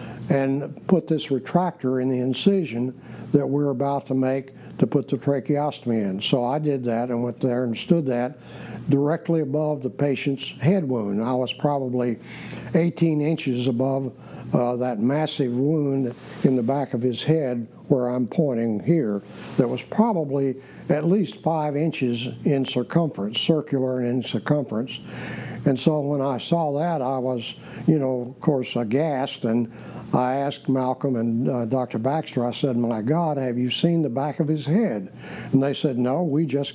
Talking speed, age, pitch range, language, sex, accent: 170 wpm, 60-79, 125-155 Hz, English, male, American